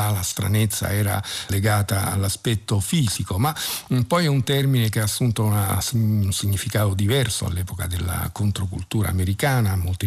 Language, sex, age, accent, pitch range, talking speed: Italian, male, 50-69, native, 100-115 Hz, 130 wpm